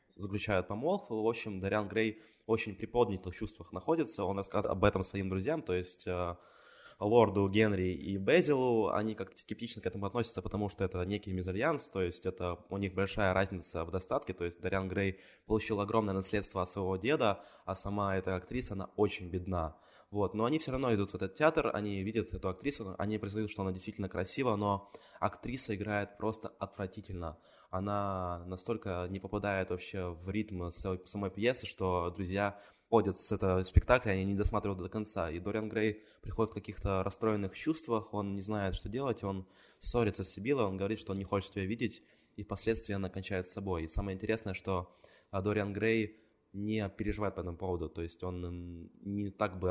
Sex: male